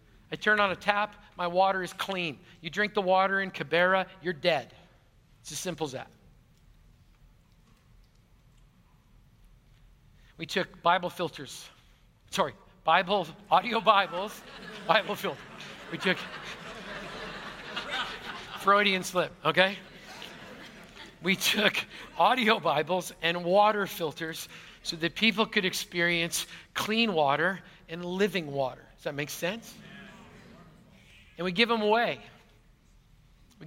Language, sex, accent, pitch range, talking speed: English, male, American, 150-195 Hz, 115 wpm